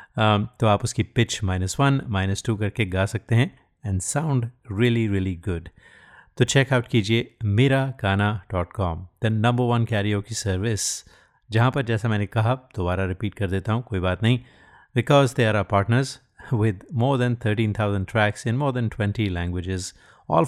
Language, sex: Hindi, male